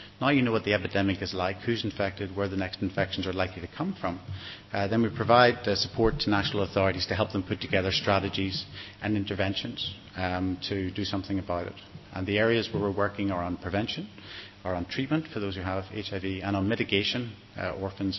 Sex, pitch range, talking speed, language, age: male, 95-115 Hz, 210 wpm, English, 30-49